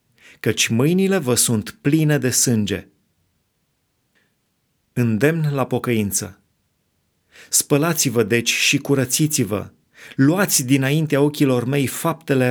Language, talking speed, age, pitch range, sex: Romanian, 90 wpm, 30-49, 120-150 Hz, male